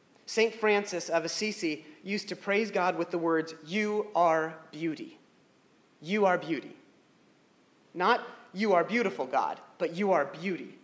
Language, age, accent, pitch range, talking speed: English, 30-49, American, 155-195 Hz, 145 wpm